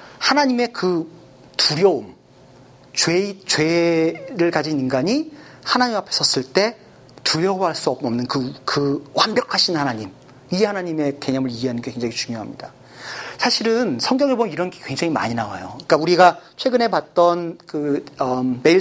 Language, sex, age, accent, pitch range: Korean, male, 40-59, native, 140-200 Hz